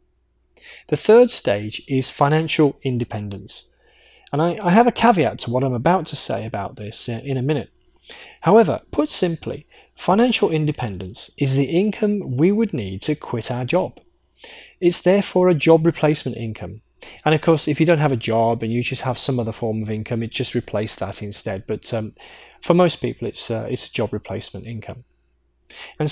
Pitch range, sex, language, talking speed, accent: 120-155 Hz, male, English, 185 wpm, British